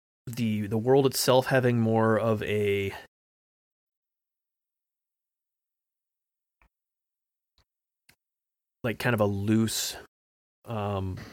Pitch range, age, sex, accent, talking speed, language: 100-140 Hz, 30-49, male, American, 75 wpm, English